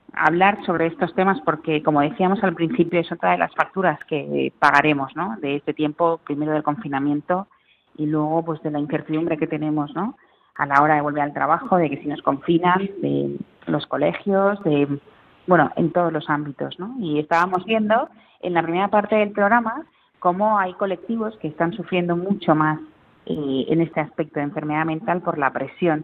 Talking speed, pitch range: 185 wpm, 150-185 Hz